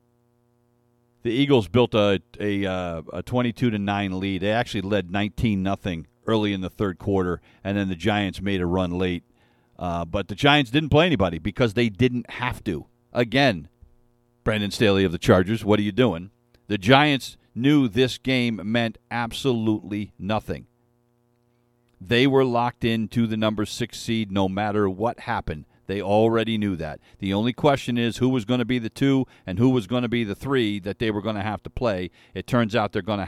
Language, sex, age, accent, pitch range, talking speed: English, male, 50-69, American, 100-120 Hz, 190 wpm